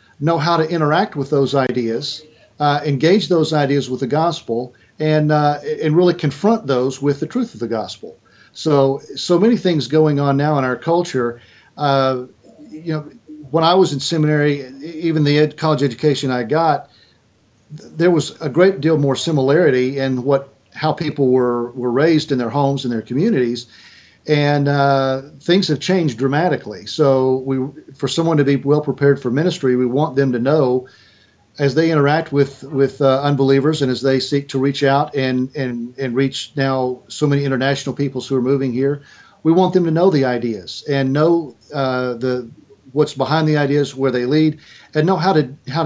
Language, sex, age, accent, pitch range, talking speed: English, male, 50-69, American, 130-155 Hz, 185 wpm